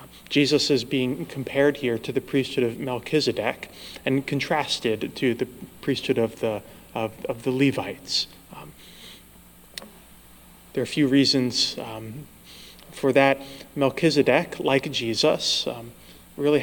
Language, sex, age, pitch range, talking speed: English, male, 30-49, 115-140 Hz, 125 wpm